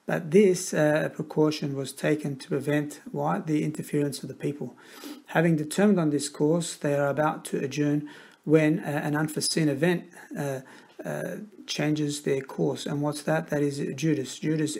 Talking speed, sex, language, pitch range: 160 wpm, male, English, 145-160 Hz